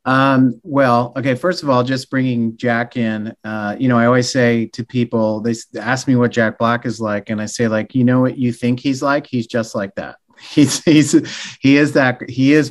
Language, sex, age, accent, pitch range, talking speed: English, male, 30-49, American, 110-130 Hz, 225 wpm